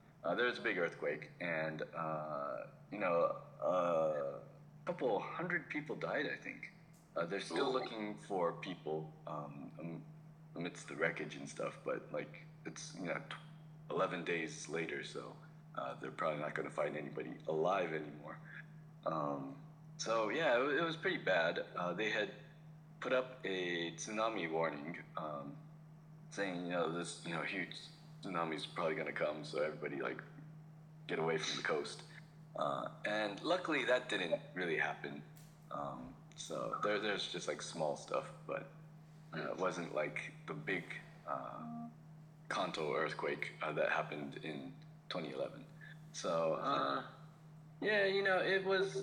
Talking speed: 150 wpm